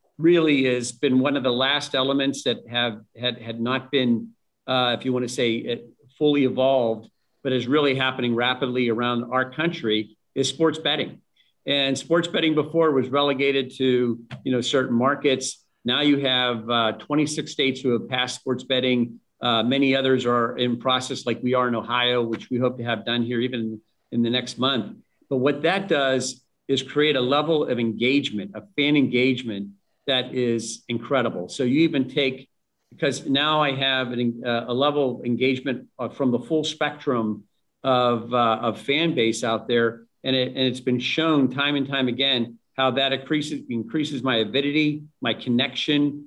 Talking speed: 180 wpm